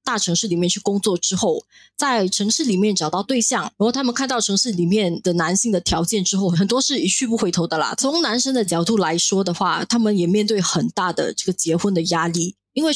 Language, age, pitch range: Chinese, 20-39, 180-235 Hz